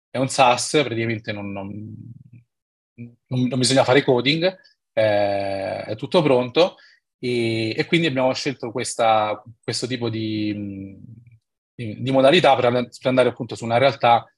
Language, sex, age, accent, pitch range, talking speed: Italian, male, 30-49, native, 105-130 Hz, 140 wpm